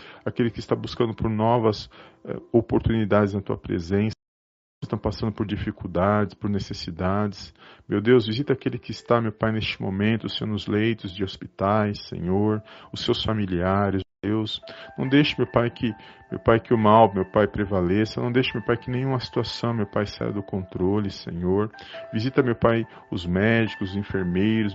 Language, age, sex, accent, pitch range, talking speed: Portuguese, 40-59, male, Brazilian, 100-120 Hz, 165 wpm